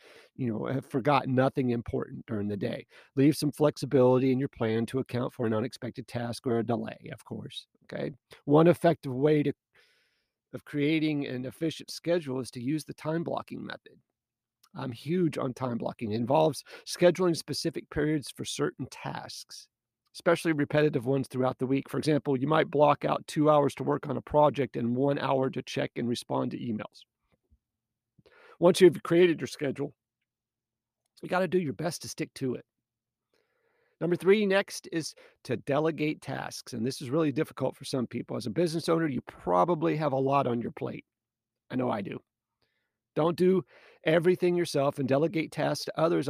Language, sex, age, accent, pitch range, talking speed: English, male, 40-59, American, 125-160 Hz, 180 wpm